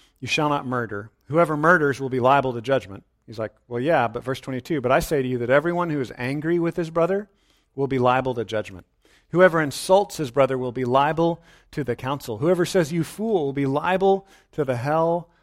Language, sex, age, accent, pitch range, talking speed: English, male, 40-59, American, 110-150 Hz, 220 wpm